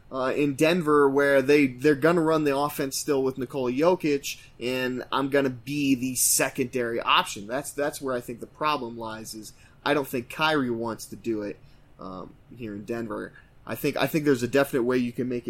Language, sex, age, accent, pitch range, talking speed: English, male, 20-39, American, 115-145 Hz, 215 wpm